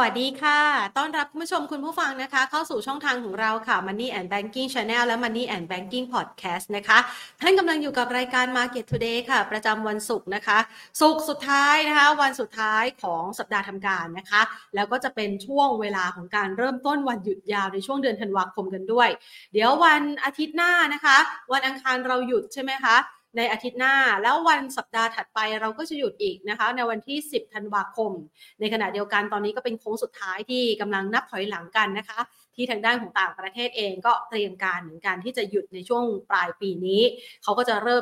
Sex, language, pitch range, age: female, Thai, 200-265 Hz, 30-49